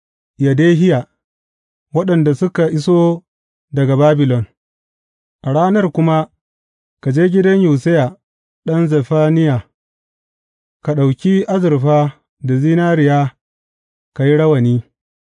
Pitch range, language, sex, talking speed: 120-165 Hz, English, male, 75 wpm